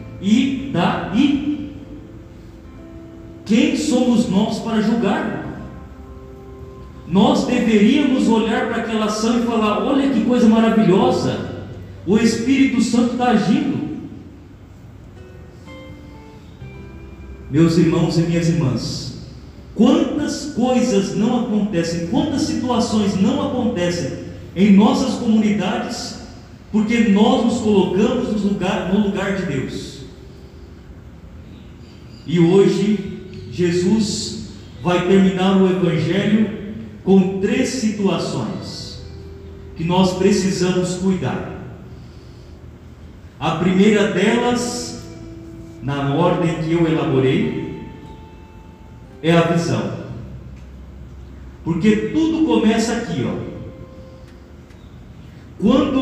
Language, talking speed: Portuguese, 85 wpm